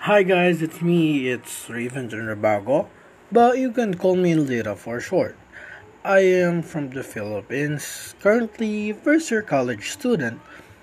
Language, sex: Filipino, male